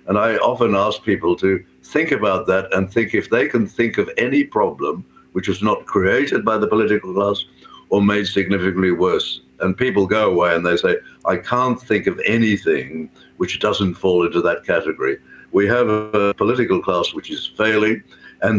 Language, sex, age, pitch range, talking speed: English, male, 60-79, 95-120 Hz, 185 wpm